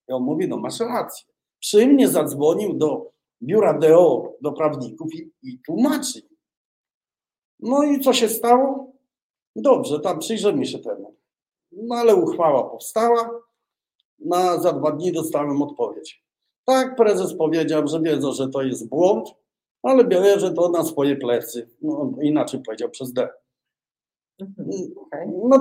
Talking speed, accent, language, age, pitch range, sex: 135 wpm, native, Polish, 50-69, 160-255 Hz, male